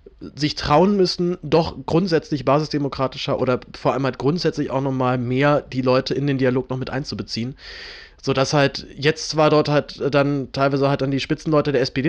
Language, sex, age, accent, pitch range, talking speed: German, male, 30-49, German, 120-145 Hz, 185 wpm